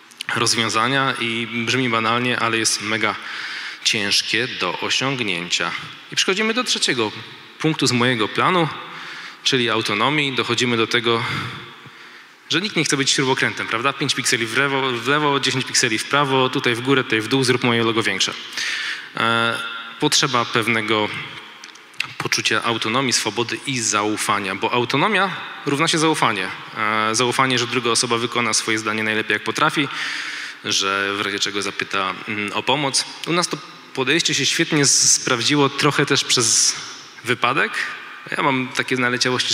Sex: male